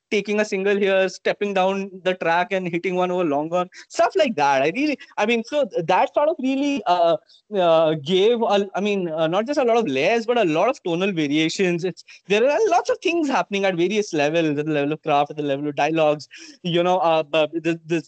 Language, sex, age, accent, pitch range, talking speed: English, male, 20-39, Indian, 175-235 Hz, 220 wpm